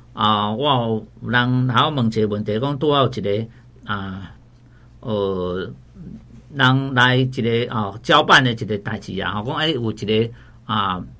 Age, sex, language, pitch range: 50-69, male, Chinese, 115-140 Hz